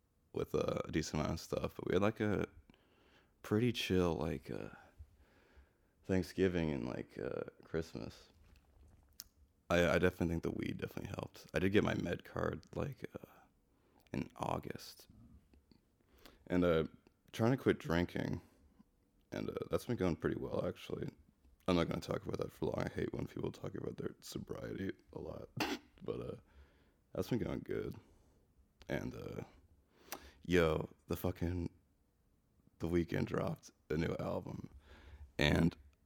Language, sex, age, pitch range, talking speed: English, male, 20-39, 75-90 Hz, 150 wpm